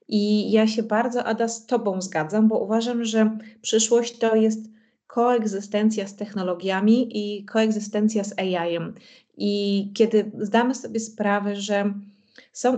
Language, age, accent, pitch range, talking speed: Polish, 30-49, native, 200-220 Hz, 130 wpm